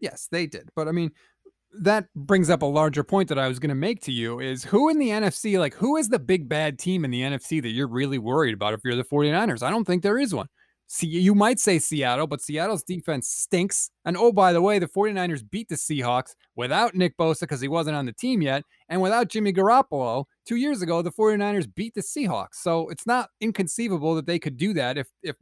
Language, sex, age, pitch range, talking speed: English, male, 30-49, 140-205 Hz, 240 wpm